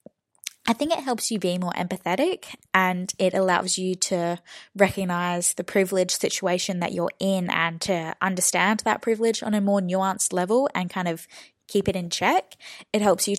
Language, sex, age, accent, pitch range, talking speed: English, female, 20-39, Australian, 175-205 Hz, 180 wpm